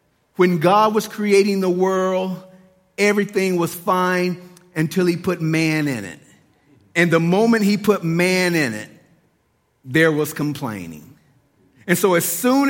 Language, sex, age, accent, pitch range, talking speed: English, male, 50-69, American, 150-195 Hz, 140 wpm